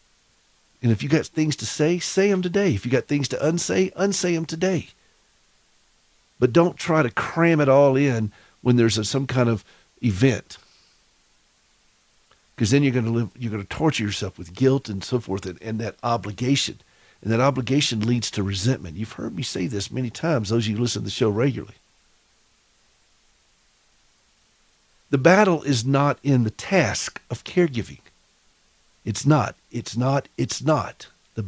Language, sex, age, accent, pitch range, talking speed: English, male, 50-69, American, 110-145 Hz, 165 wpm